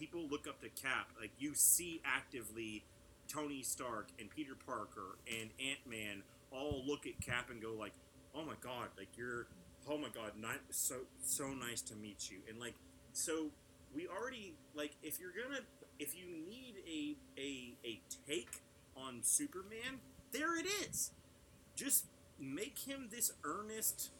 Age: 30-49